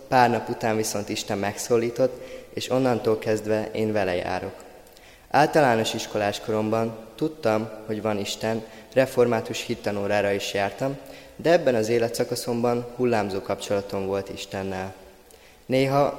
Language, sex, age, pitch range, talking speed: Hungarian, male, 20-39, 105-125 Hz, 120 wpm